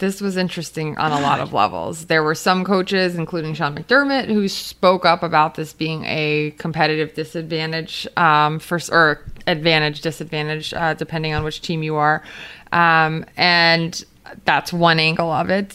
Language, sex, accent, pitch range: English, female, American, 160-190 Hz